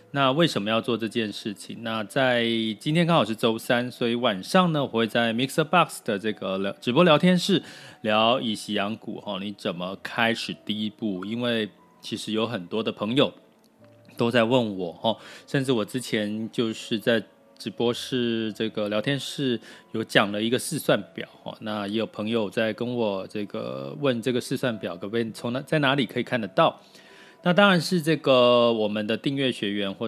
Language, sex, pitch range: Chinese, male, 110-140 Hz